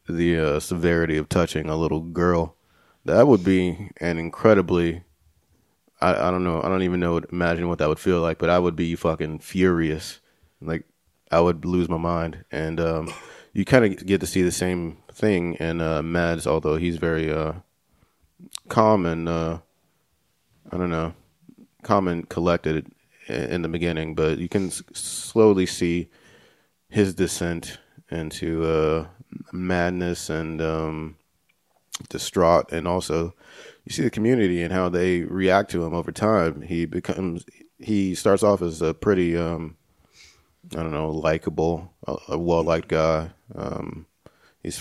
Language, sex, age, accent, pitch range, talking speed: English, male, 30-49, American, 80-90 Hz, 150 wpm